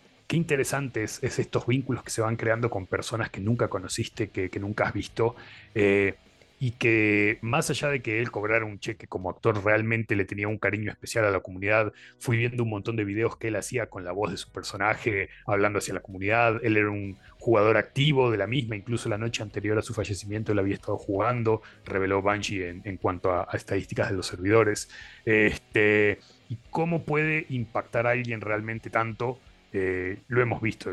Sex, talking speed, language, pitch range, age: male, 200 wpm, Spanish, 100-120 Hz, 30-49